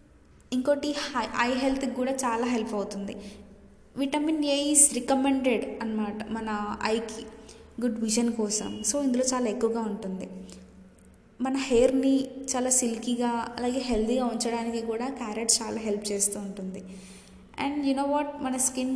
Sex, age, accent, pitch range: female, 20-39, native, 210-255 Hz